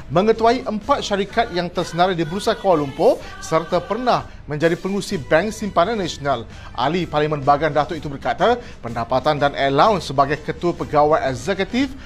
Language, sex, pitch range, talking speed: Malay, male, 145-205 Hz, 145 wpm